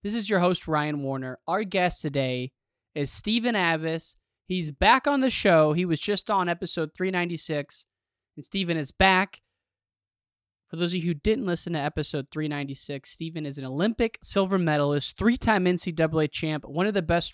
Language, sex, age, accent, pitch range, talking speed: English, male, 20-39, American, 135-185 Hz, 175 wpm